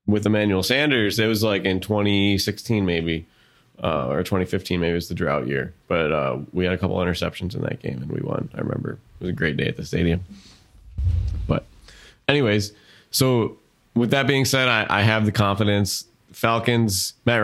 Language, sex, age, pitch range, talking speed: English, male, 20-39, 90-110 Hz, 190 wpm